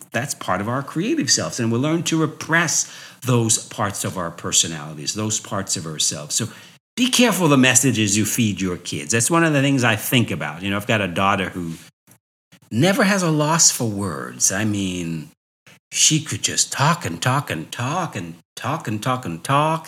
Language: English